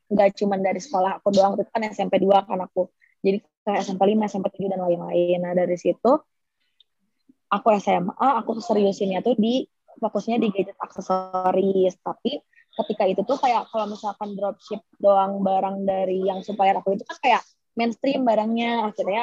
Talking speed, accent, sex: 150 wpm, native, female